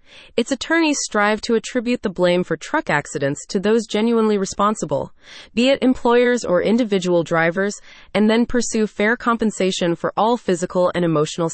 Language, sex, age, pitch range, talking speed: English, female, 20-39, 175-240 Hz, 155 wpm